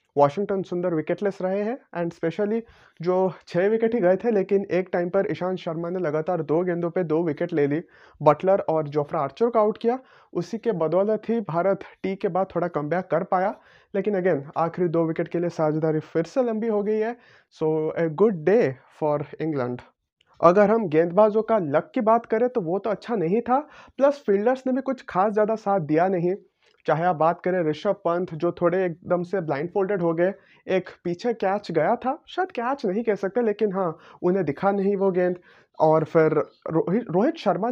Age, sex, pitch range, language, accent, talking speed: 30-49, male, 165-215 Hz, Hindi, native, 200 wpm